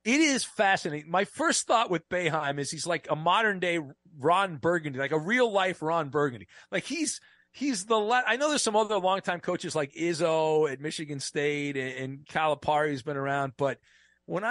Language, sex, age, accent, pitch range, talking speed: English, male, 40-59, American, 150-195 Hz, 190 wpm